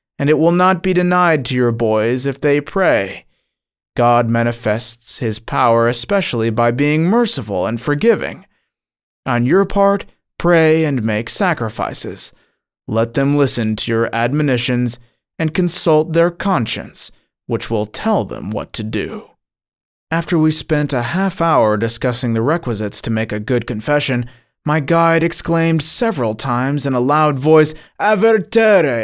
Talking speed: 145 wpm